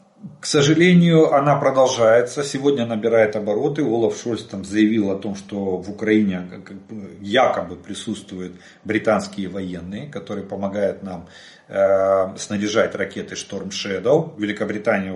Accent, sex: native, male